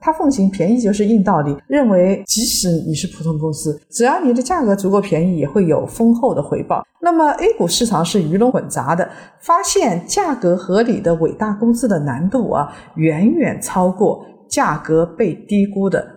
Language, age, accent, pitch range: Chinese, 50-69, native, 170-250 Hz